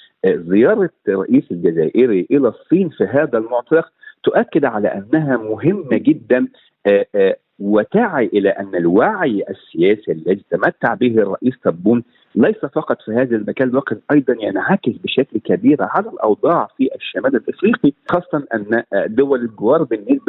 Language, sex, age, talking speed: Arabic, male, 50-69, 130 wpm